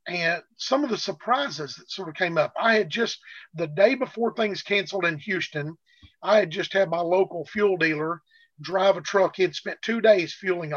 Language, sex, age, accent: English, male, 40-59, American